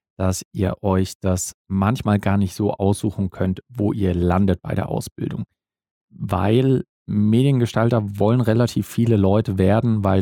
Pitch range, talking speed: 95-110 Hz, 140 wpm